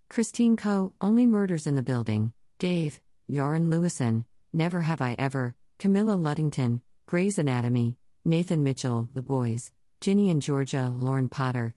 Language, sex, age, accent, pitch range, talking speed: English, female, 50-69, American, 125-160 Hz, 140 wpm